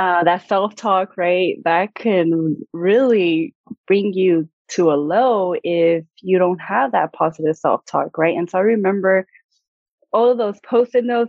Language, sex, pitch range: English, female, 170-220 Hz